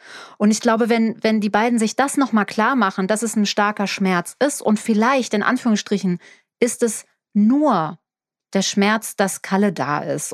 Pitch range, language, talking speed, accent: 185-220 Hz, German, 180 wpm, German